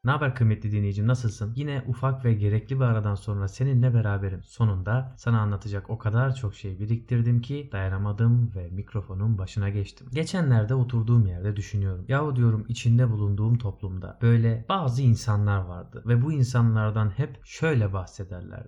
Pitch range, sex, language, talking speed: 105-130 Hz, male, Turkish, 150 wpm